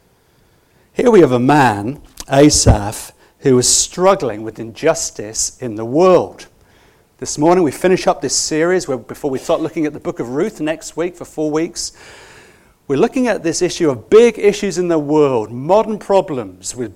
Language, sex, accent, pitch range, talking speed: English, male, British, 135-200 Hz, 175 wpm